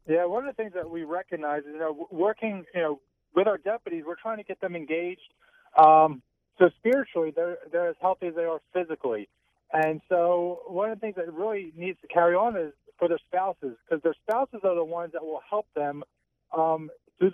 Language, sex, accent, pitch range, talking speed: English, male, American, 160-195 Hz, 215 wpm